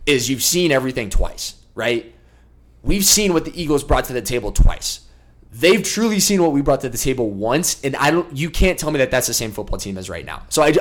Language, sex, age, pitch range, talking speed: English, male, 20-39, 110-150 Hz, 245 wpm